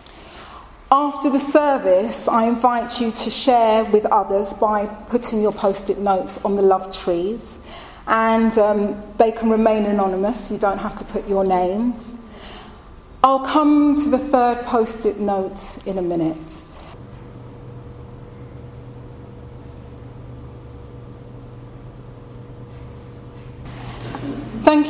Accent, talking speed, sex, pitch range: British, 105 wpm, female, 160-245 Hz